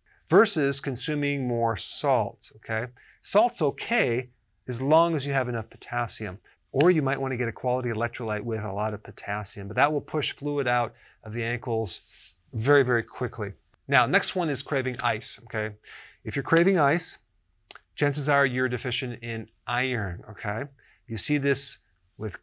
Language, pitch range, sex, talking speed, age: English, 110-140 Hz, male, 165 wpm, 40-59